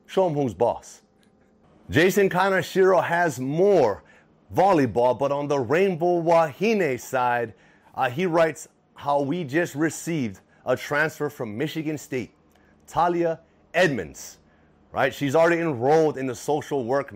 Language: English